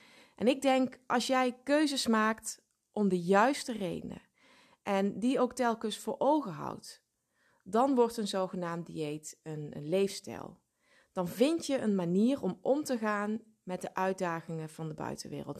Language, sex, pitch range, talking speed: Dutch, female, 195-255 Hz, 160 wpm